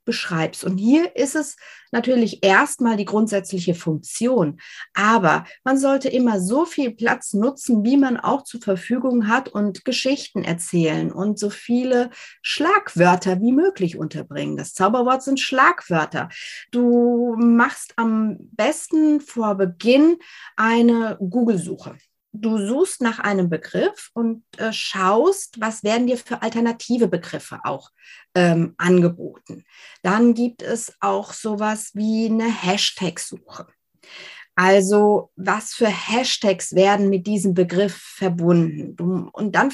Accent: German